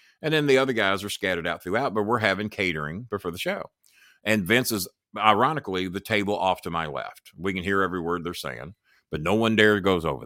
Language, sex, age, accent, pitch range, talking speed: English, male, 50-69, American, 90-125 Hz, 230 wpm